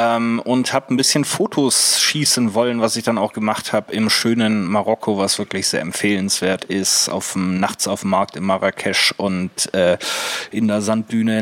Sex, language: male, German